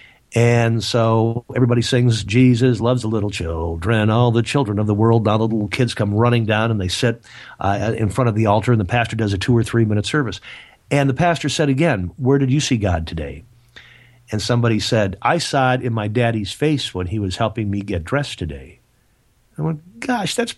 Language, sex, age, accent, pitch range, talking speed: English, male, 50-69, American, 110-140 Hz, 215 wpm